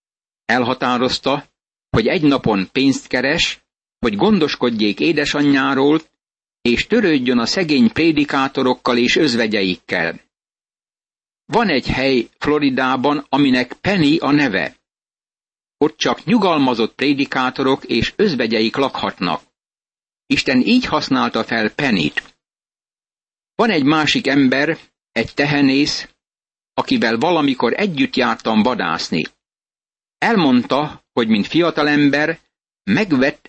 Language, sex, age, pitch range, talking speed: Hungarian, male, 60-79, 125-155 Hz, 95 wpm